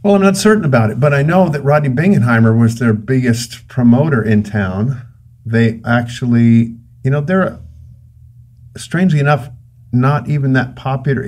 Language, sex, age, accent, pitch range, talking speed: English, male, 50-69, American, 110-130 Hz, 155 wpm